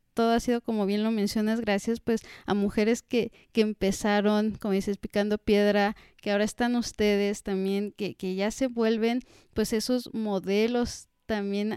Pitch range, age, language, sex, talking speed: 195-225 Hz, 30-49, Spanish, female, 165 wpm